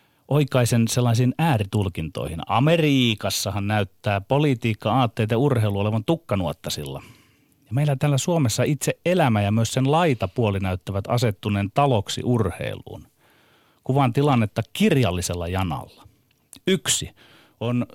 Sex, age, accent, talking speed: male, 30-49, native, 105 wpm